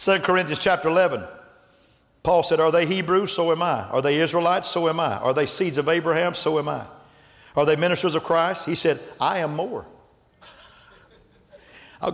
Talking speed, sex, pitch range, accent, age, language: 185 wpm, male, 155-175 Hz, American, 50-69, English